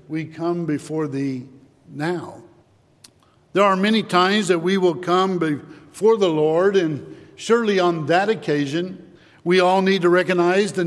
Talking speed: 150 wpm